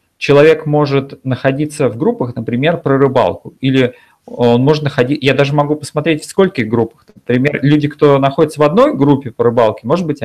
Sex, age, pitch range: male, 30-49, 115-145 Hz